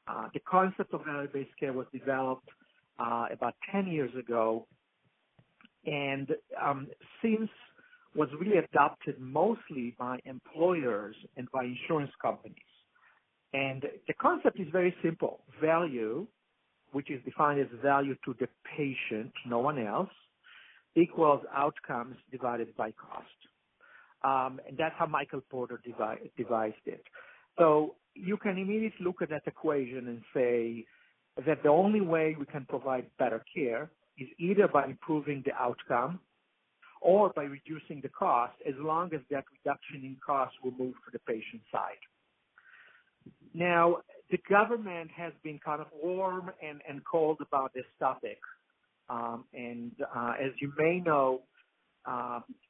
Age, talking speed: 60-79, 140 wpm